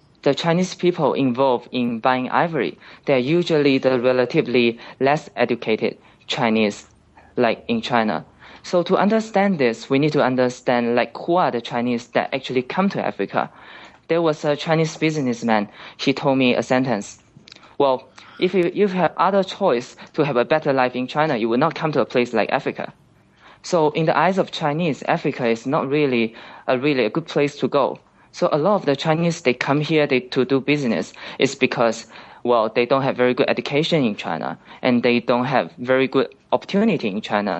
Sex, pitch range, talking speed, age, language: male, 120-155 Hz, 190 wpm, 20-39, English